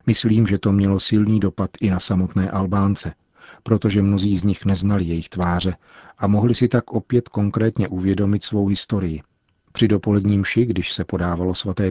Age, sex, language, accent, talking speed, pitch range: 40-59, male, Czech, native, 165 wpm, 95-110 Hz